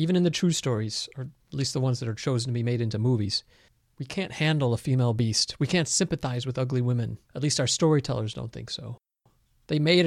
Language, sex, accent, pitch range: English, male, American, 125-175 Hz